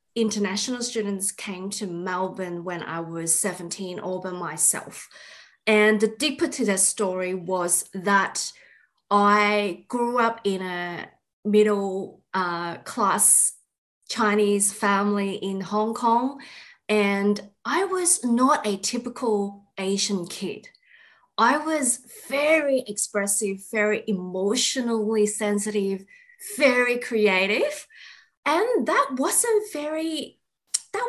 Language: English